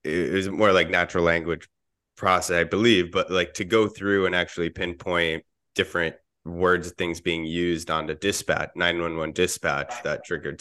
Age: 20-39